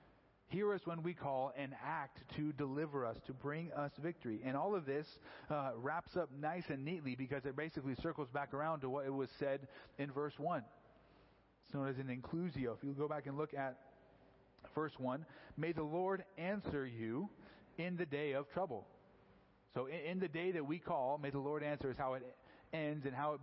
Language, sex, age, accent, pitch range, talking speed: English, male, 40-59, American, 130-160 Hz, 205 wpm